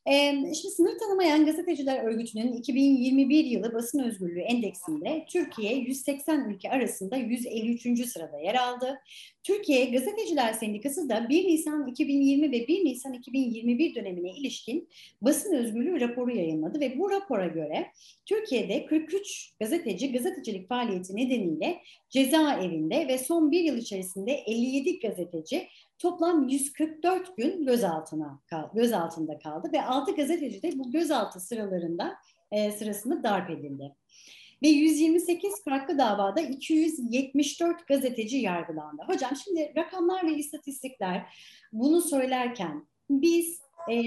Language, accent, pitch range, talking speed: Turkish, native, 220-310 Hz, 115 wpm